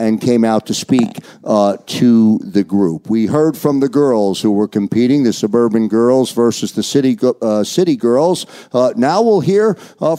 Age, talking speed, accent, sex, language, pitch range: 50-69, 190 wpm, American, male, English, 115-155 Hz